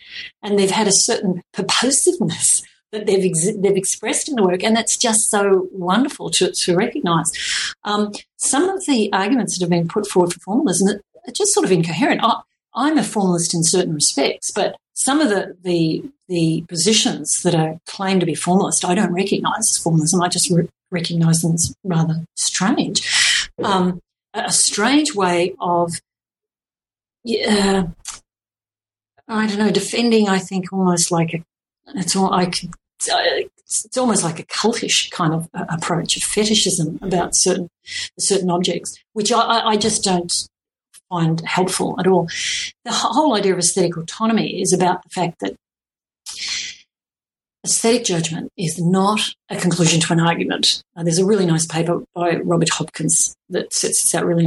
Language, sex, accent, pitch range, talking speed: English, female, Australian, 170-215 Hz, 160 wpm